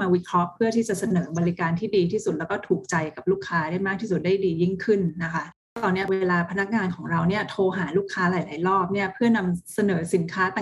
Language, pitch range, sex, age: Thai, 175-205 Hz, female, 30-49